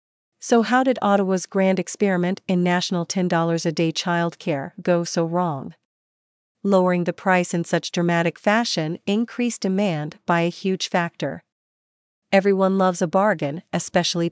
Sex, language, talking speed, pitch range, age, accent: female, English, 130 wpm, 170-205 Hz, 40-59, American